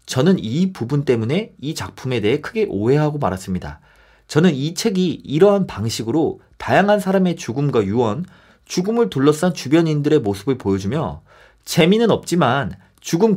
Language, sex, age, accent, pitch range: Korean, male, 40-59, native, 130-205 Hz